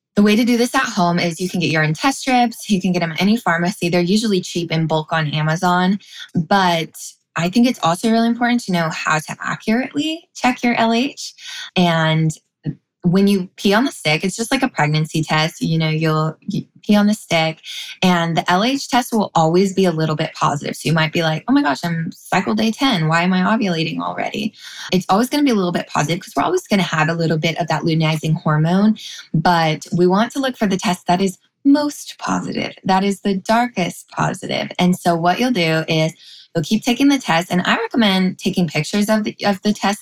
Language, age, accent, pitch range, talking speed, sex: English, 10-29, American, 160-200 Hz, 225 wpm, female